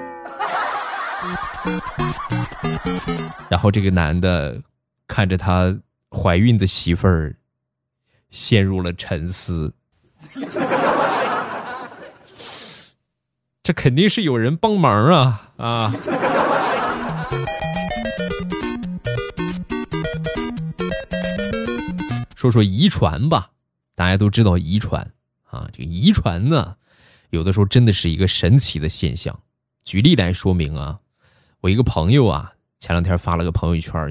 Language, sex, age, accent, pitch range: Chinese, male, 20-39, native, 85-125 Hz